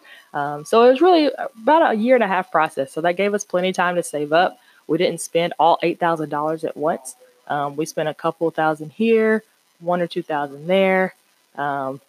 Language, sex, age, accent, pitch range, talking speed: English, female, 20-39, American, 150-180 Hz, 220 wpm